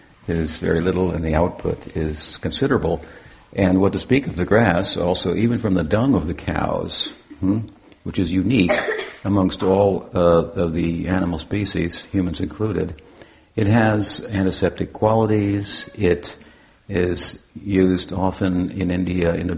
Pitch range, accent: 85-100 Hz, American